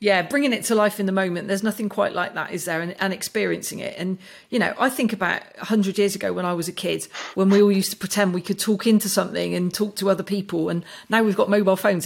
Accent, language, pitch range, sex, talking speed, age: British, English, 185-220 Hz, female, 280 wpm, 40-59